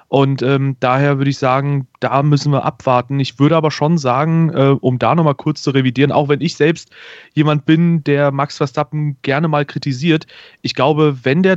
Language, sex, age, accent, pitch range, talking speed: German, male, 30-49, German, 130-150 Hz, 195 wpm